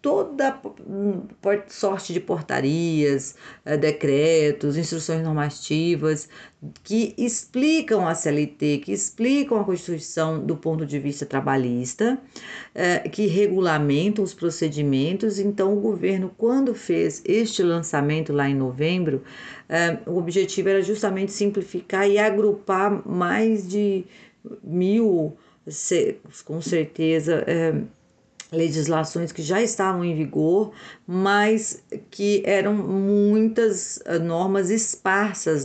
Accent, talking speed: Brazilian, 100 wpm